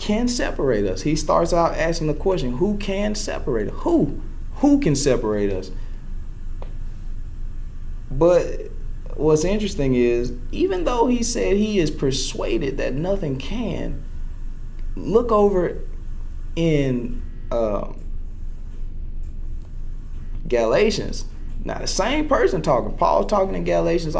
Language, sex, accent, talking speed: English, male, American, 110 wpm